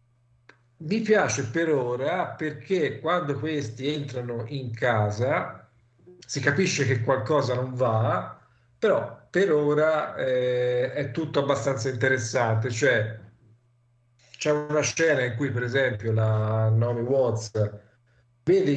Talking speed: 115 wpm